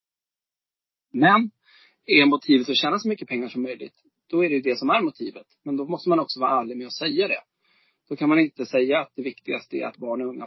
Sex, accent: male, native